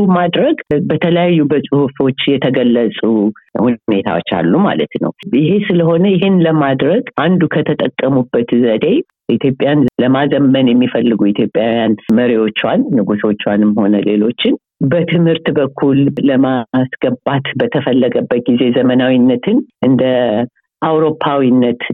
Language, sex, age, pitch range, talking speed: Amharic, female, 50-69, 125-155 Hz, 85 wpm